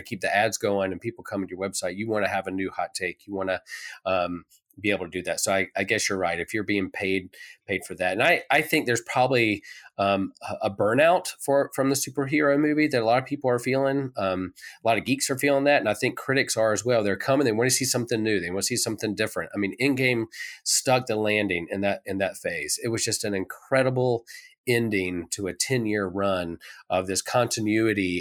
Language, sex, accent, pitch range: English, male, American, 100-130 Hz